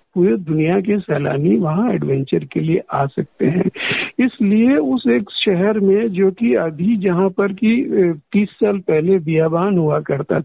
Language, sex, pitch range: Hindi, male, 175-230 Hz